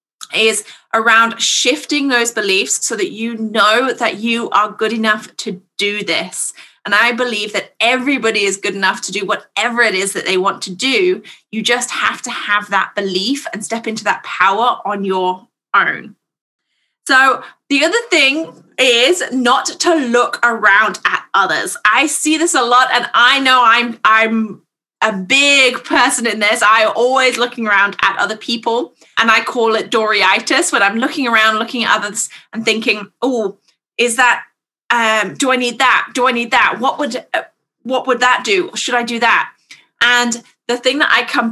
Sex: female